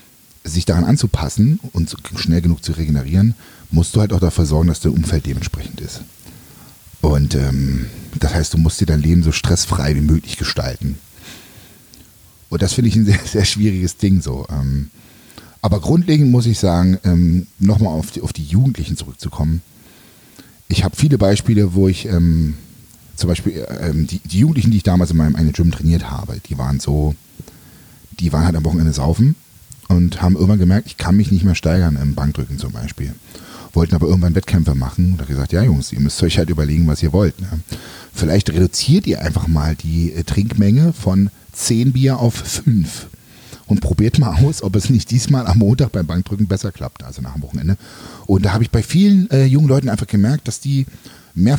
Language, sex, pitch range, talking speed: German, male, 80-110 Hz, 190 wpm